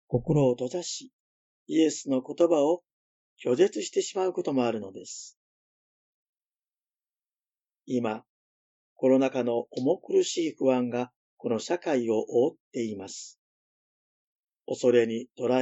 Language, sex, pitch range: Japanese, male, 125-170 Hz